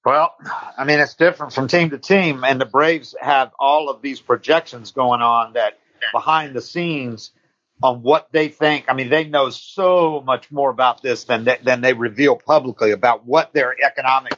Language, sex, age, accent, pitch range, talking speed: English, male, 50-69, American, 130-165 Hz, 190 wpm